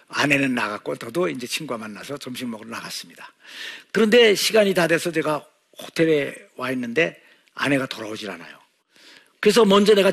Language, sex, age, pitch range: Korean, male, 50-69, 140-185 Hz